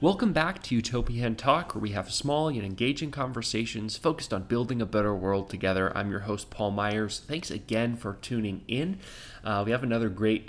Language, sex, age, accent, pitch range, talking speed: English, male, 20-39, American, 100-120 Hz, 195 wpm